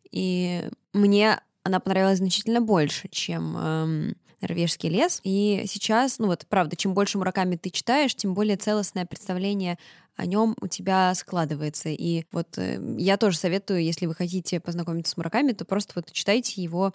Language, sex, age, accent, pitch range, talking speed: Russian, female, 10-29, native, 170-215 Hz, 165 wpm